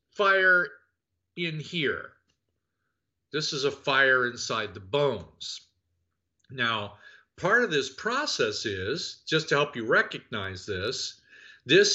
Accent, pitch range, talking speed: American, 120-165 Hz, 115 wpm